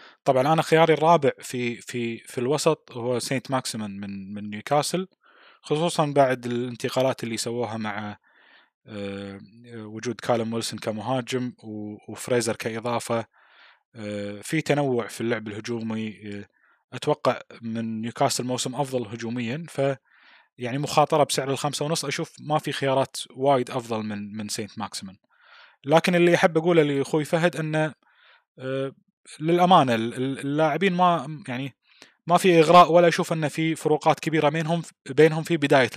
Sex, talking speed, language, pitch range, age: male, 130 wpm, Arabic, 110-150 Hz, 20-39